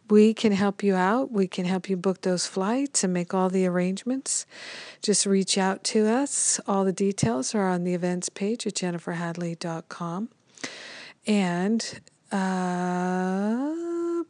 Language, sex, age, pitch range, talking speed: English, female, 50-69, 175-215 Hz, 145 wpm